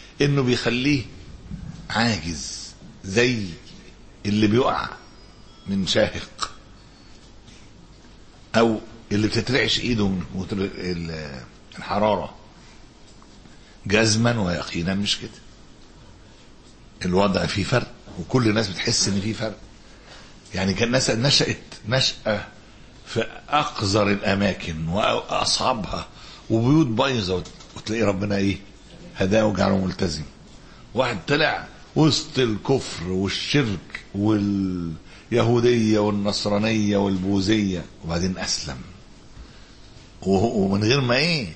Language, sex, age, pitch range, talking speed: Arabic, male, 60-79, 95-120 Hz, 85 wpm